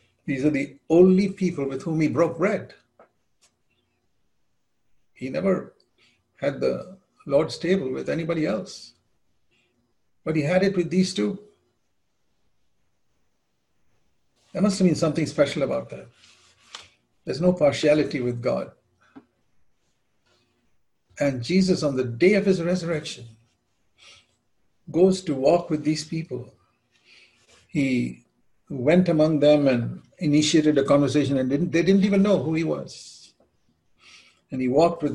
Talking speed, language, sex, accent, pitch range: 125 wpm, English, male, Indian, 125-165 Hz